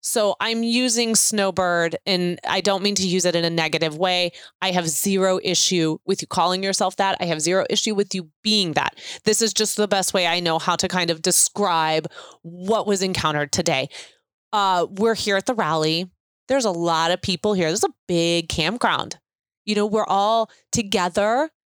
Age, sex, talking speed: 20-39, female, 195 wpm